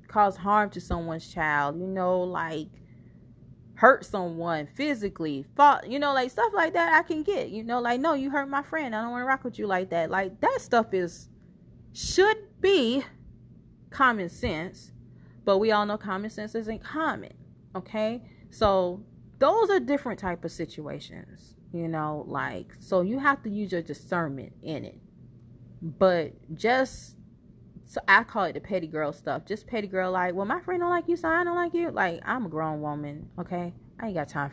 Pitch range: 165-225 Hz